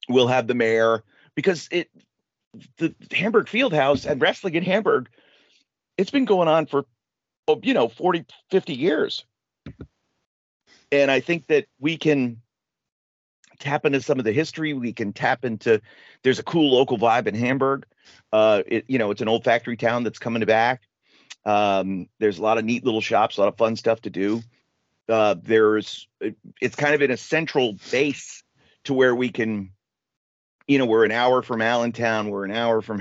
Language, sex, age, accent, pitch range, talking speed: English, male, 40-59, American, 110-150 Hz, 180 wpm